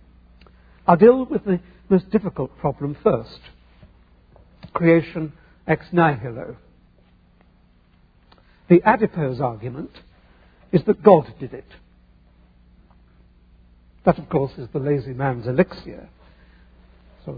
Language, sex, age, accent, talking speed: English, male, 60-79, British, 95 wpm